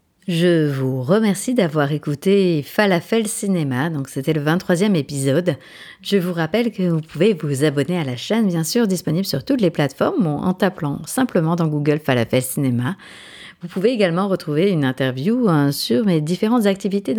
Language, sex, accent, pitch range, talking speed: French, female, French, 150-210 Hz, 175 wpm